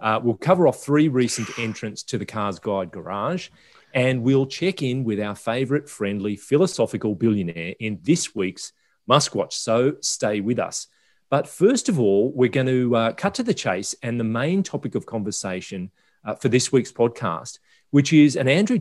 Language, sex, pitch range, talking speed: English, male, 105-145 Hz, 185 wpm